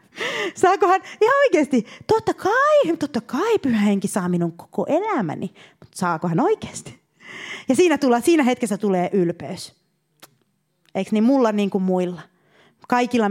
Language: Finnish